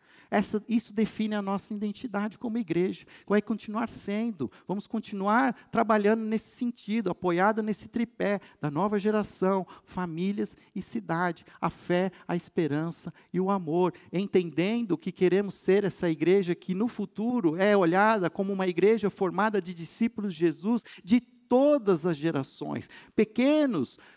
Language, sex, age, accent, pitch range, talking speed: Portuguese, male, 50-69, Brazilian, 180-225 Hz, 140 wpm